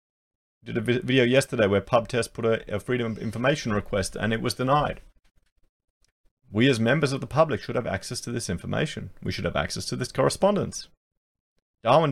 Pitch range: 95-120 Hz